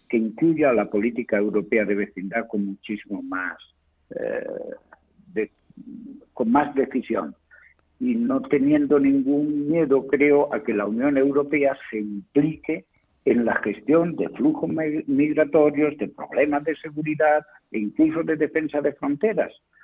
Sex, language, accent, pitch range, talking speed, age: male, Spanish, Spanish, 135-180 Hz, 135 wpm, 60-79